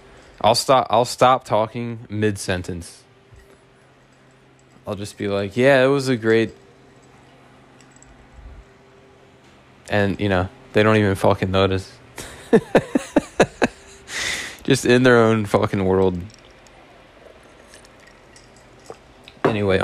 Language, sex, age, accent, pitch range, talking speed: English, male, 20-39, American, 95-115 Hz, 90 wpm